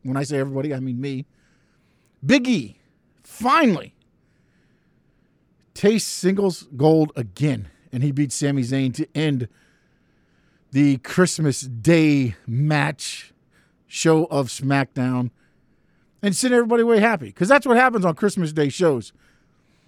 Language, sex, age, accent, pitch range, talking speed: English, male, 50-69, American, 135-200 Hz, 120 wpm